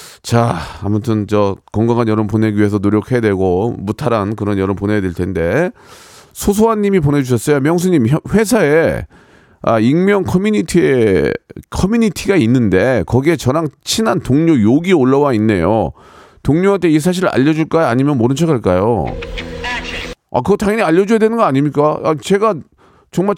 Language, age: Korean, 40-59